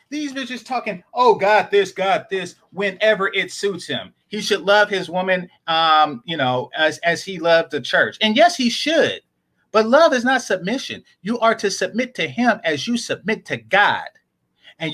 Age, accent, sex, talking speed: 30-49, American, male, 195 wpm